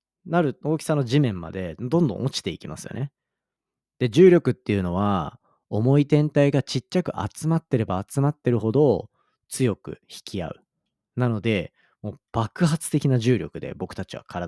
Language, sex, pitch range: Japanese, male, 100-160 Hz